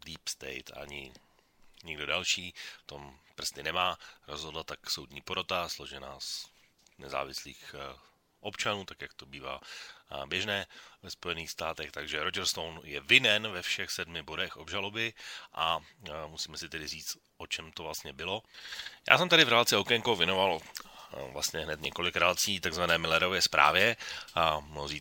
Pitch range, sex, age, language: 80-105 Hz, male, 30-49, Slovak